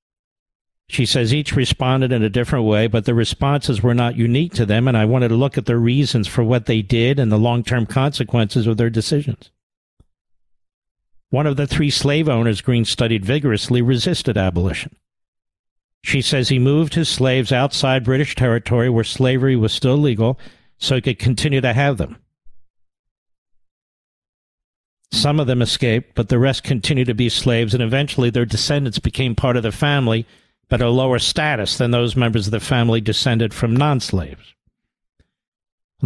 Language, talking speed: English, 170 wpm